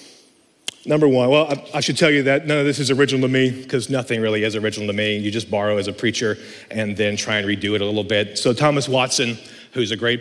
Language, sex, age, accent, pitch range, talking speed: English, male, 30-49, American, 110-160 Hz, 260 wpm